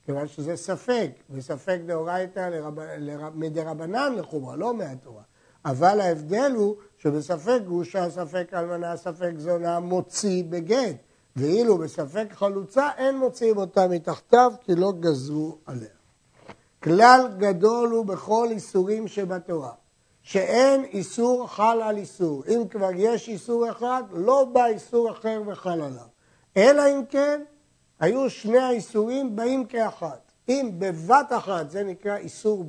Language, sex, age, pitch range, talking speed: Hebrew, male, 60-79, 170-235 Hz, 125 wpm